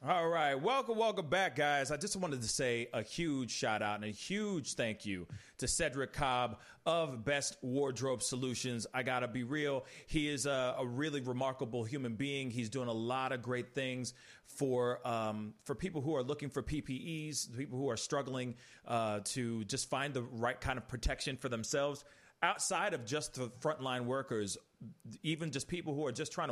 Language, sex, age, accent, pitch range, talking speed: English, male, 30-49, American, 120-145 Hz, 190 wpm